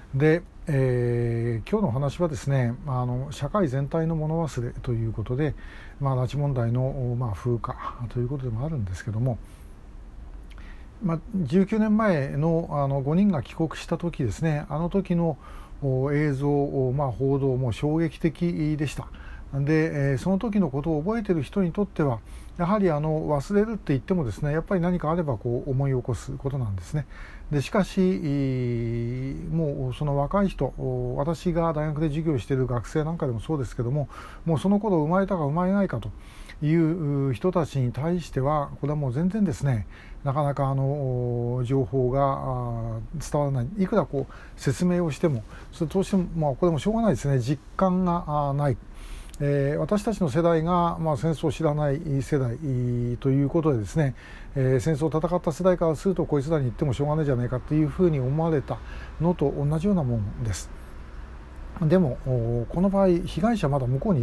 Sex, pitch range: male, 125-165 Hz